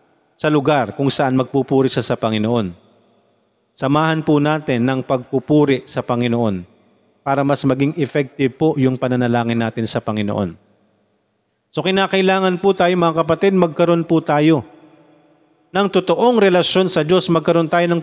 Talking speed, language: 135 wpm, Filipino